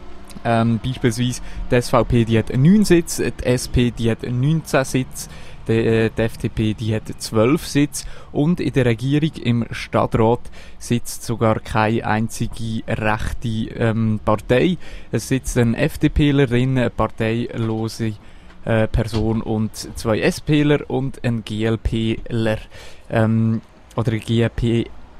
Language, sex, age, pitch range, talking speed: German, male, 20-39, 110-135 Hz, 120 wpm